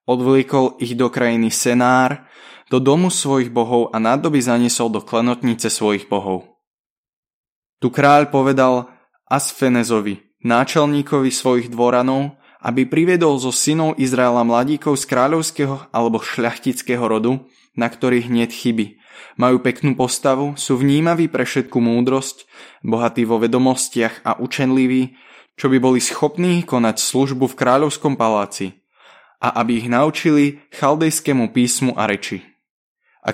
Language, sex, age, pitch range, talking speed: Slovak, male, 20-39, 115-135 Hz, 125 wpm